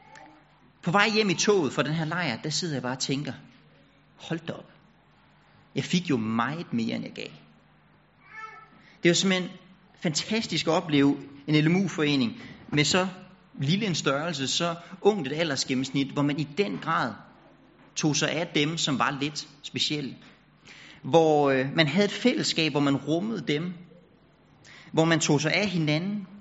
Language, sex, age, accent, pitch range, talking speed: Danish, male, 30-49, native, 140-180 Hz, 165 wpm